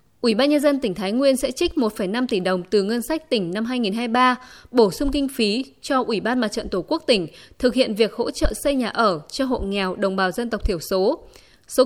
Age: 20-39